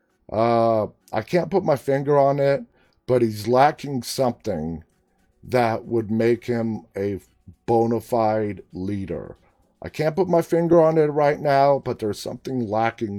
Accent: American